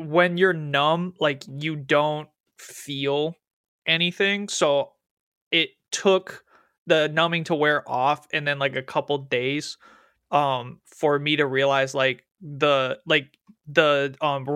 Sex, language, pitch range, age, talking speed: male, English, 135-155 Hz, 20-39, 130 wpm